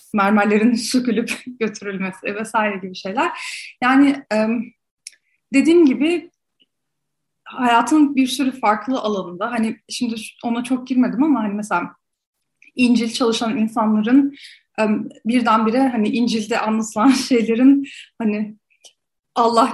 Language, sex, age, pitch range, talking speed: Turkish, female, 30-49, 220-275 Hz, 95 wpm